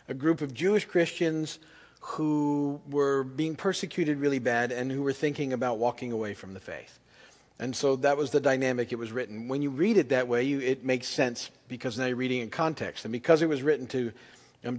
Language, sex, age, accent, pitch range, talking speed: English, male, 40-59, American, 120-145 Hz, 215 wpm